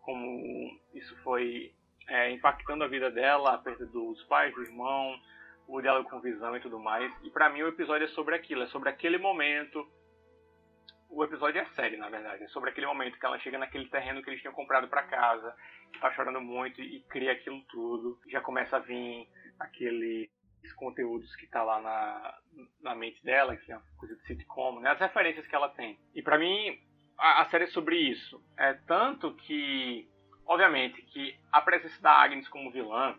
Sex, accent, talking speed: male, Brazilian, 195 wpm